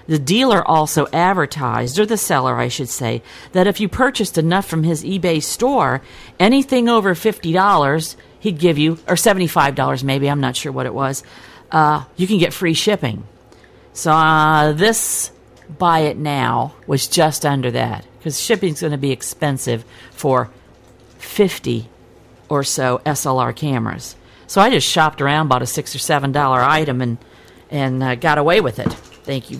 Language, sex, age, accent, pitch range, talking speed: English, female, 50-69, American, 135-170 Hz, 165 wpm